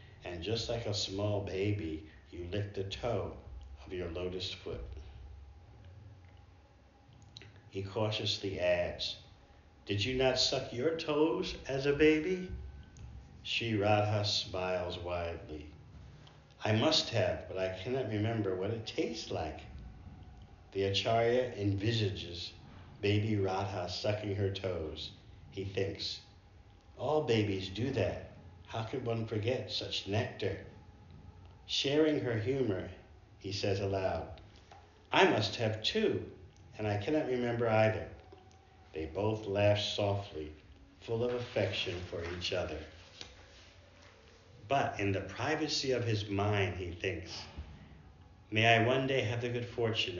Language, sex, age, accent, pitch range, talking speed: English, male, 50-69, American, 90-110 Hz, 125 wpm